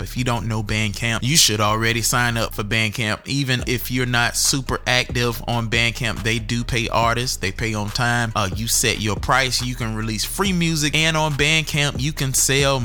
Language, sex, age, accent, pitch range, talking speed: English, male, 20-39, American, 110-140 Hz, 205 wpm